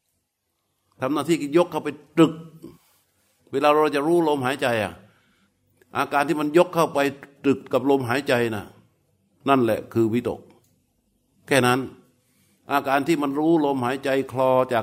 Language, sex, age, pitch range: Thai, male, 60-79, 115-145 Hz